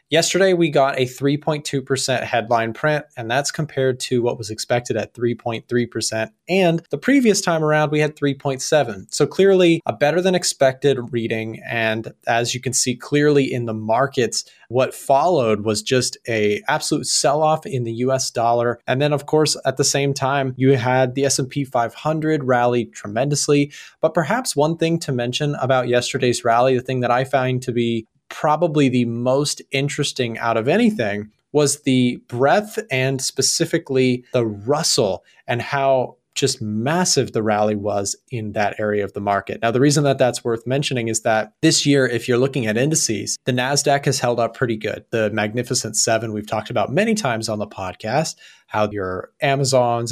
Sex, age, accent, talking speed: male, 20-39, American, 175 wpm